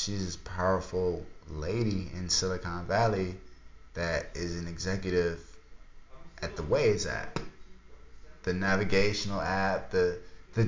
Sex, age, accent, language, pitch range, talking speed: male, 20-39, American, English, 90-125 Hz, 110 wpm